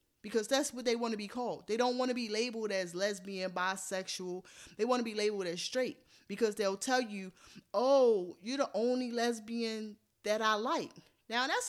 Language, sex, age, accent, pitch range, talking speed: English, female, 20-39, American, 195-250 Hz, 195 wpm